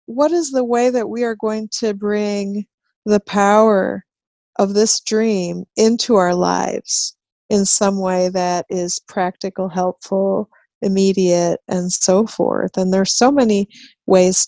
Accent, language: American, English